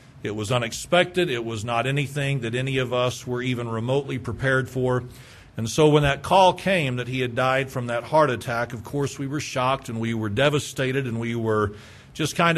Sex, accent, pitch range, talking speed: male, American, 125-150 Hz, 210 wpm